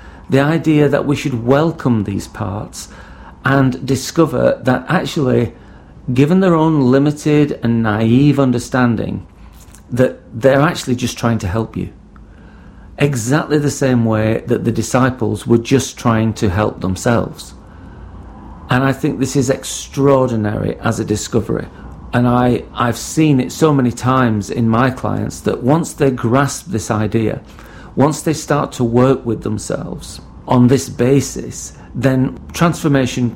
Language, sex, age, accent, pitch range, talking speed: English, male, 40-59, British, 110-140 Hz, 140 wpm